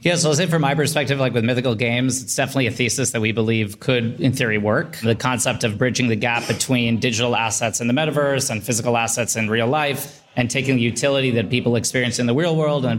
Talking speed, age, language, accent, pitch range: 240 wpm, 30-49, English, American, 120-140 Hz